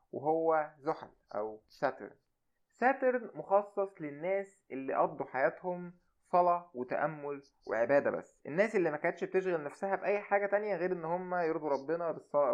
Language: Arabic